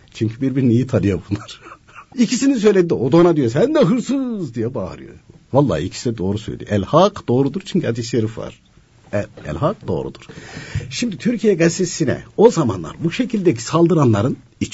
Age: 60-79